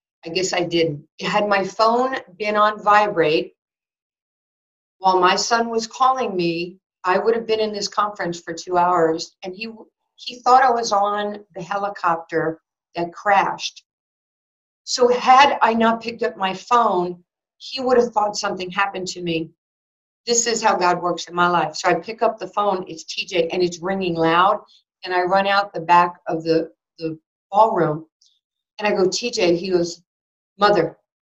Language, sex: English, female